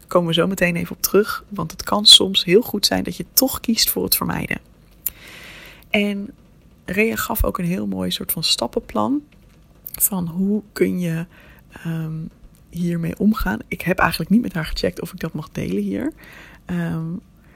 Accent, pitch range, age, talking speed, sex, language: Dutch, 165-205 Hz, 20-39, 180 wpm, female, Dutch